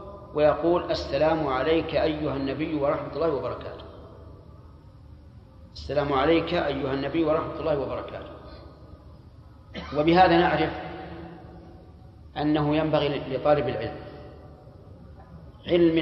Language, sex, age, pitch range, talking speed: Arabic, male, 40-59, 125-165 Hz, 80 wpm